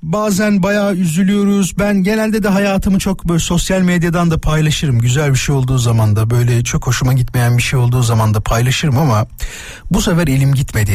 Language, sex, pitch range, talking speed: Turkish, male, 135-210 Hz, 185 wpm